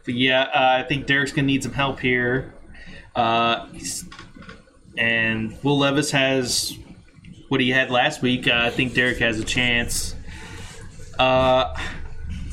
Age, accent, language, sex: 20-39, American, English, male